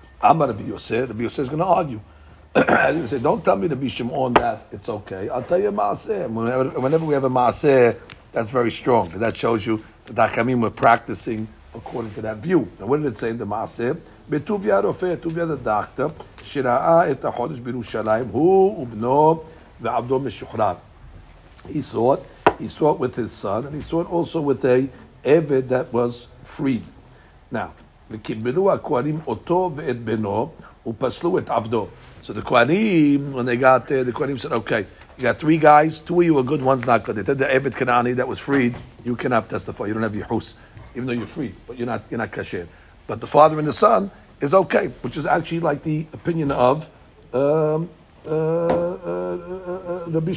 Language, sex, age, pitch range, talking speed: English, male, 60-79, 115-155 Hz, 180 wpm